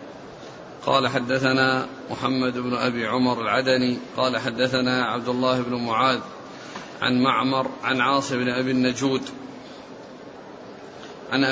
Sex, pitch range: male, 130-150 Hz